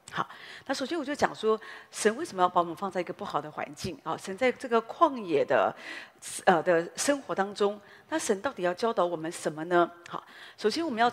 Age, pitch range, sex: 40-59, 175-240 Hz, female